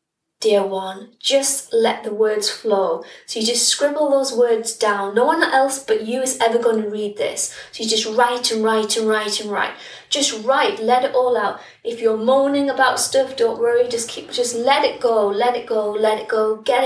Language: English